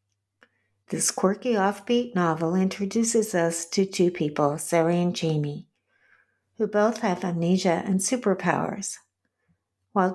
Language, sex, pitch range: English, female, 170-210 Hz